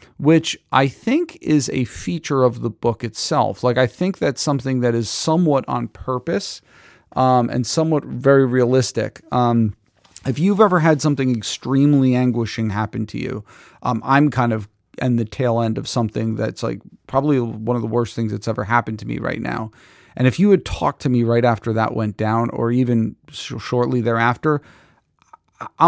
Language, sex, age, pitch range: English, male, 40-59, 115-135 Hz